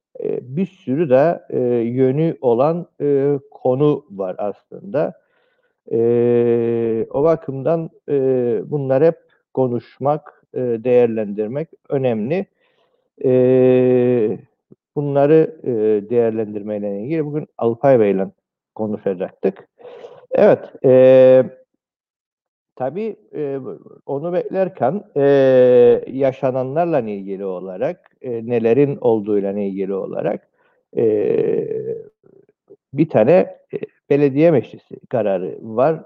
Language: Turkish